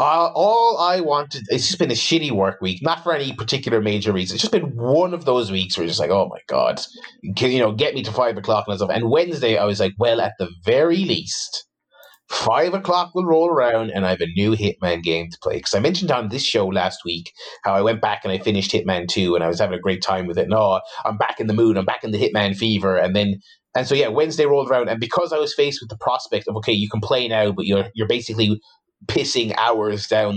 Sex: male